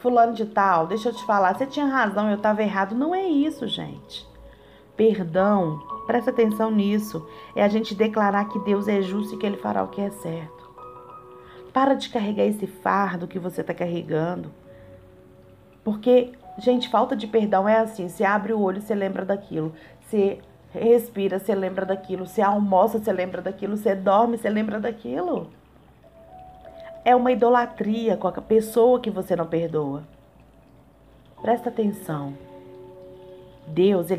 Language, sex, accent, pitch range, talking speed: Portuguese, female, Brazilian, 170-225 Hz, 155 wpm